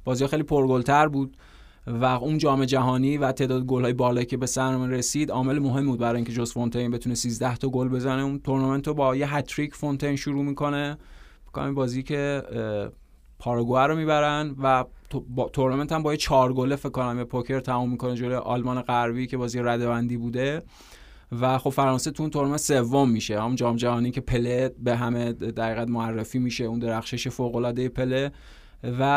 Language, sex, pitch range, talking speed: Persian, male, 120-135 Hz, 175 wpm